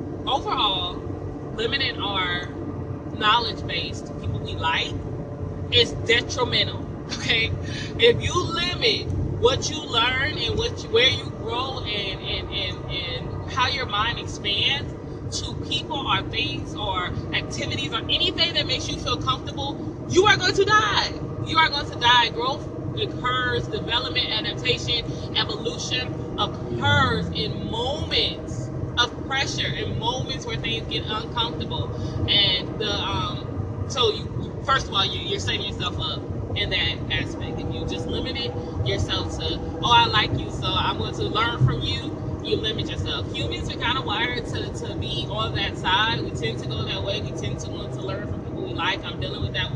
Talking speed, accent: 165 wpm, American